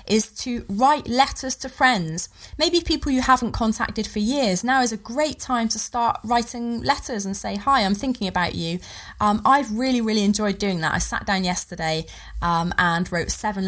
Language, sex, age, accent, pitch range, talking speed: English, female, 20-39, British, 175-225 Hz, 195 wpm